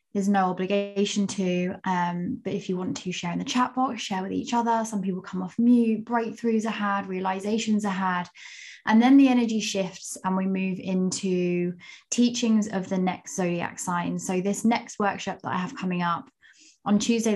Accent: British